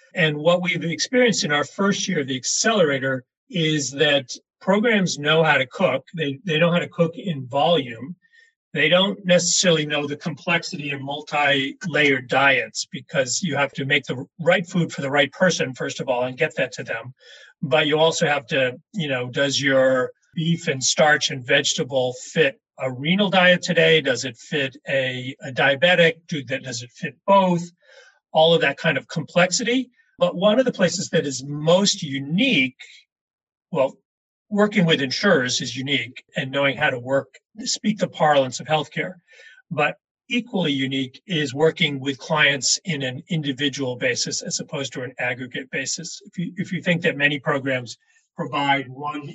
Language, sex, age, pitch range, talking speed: English, male, 40-59, 135-180 Hz, 175 wpm